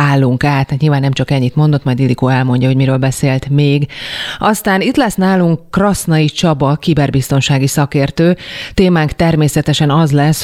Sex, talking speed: female, 150 wpm